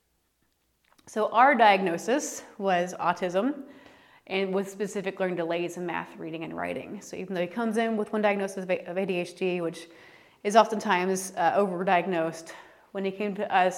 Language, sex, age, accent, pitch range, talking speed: English, female, 30-49, American, 180-215 Hz, 155 wpm